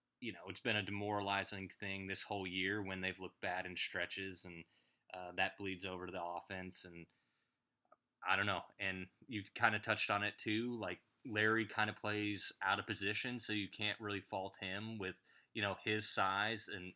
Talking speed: 200 wpm